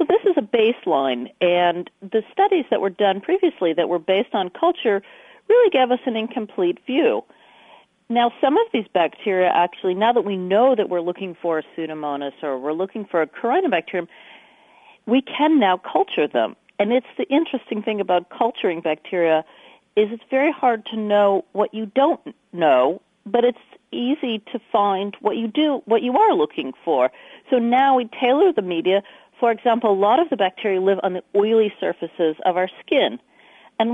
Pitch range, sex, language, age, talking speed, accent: 185-270 Hz, female, English, 40-59, 180 wpm, American